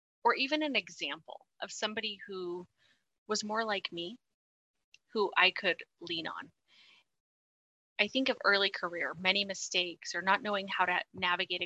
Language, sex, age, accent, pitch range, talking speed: English, female, 20-39, American, 180-230 Hz, 150 wpm